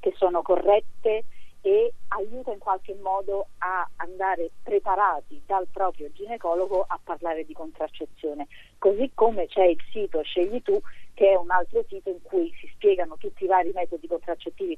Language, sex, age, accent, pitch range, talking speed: Italian, female, 40-59, native, 165-205 Hz, 160 wpm